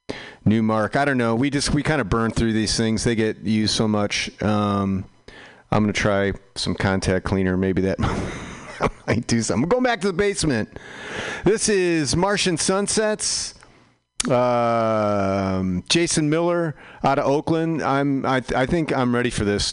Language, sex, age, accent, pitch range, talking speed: English, male, 40-59, American, 100-140 Hz, 170 wpm